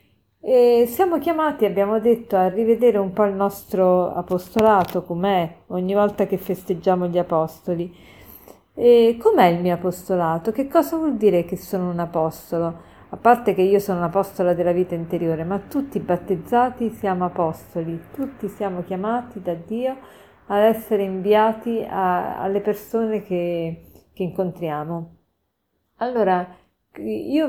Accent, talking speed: native, 130 wpm